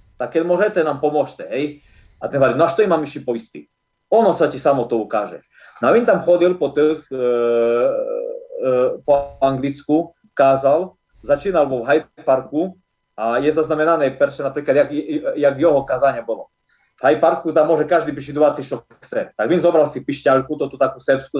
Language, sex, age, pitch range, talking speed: Slovak, male, 30-49, 140-180 Hz, 180 wpm